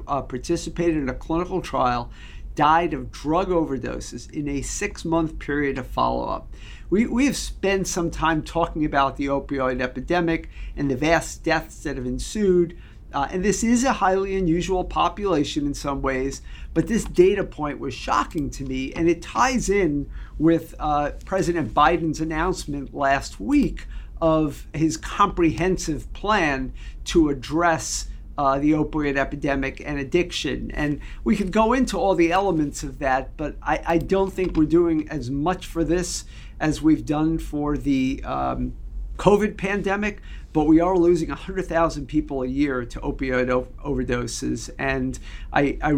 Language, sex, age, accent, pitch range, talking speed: English, male, 50-69, American, 135-175 Hz, 155 wpm